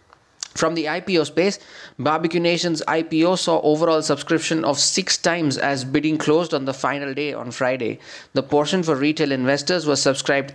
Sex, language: male, English